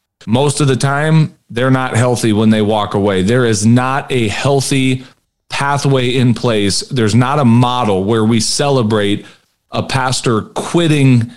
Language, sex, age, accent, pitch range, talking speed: English, male, 40-59, American, 110-135 Hz, 155 wpm